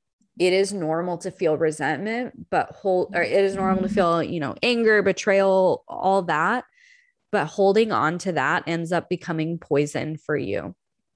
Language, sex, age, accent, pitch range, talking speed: English, female, 20-39, American, 155-195 Hz, 165 wpm